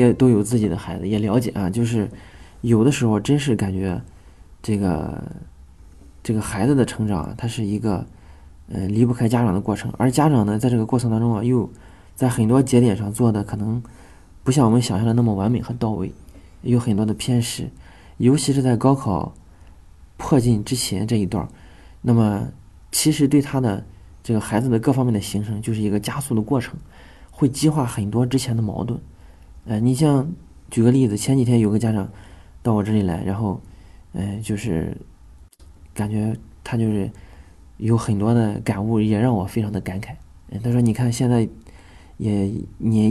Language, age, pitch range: Chinese, 20-39, 95-120 Hz